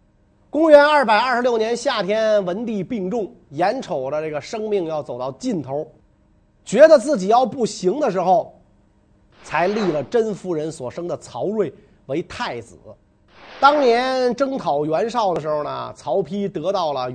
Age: 30-49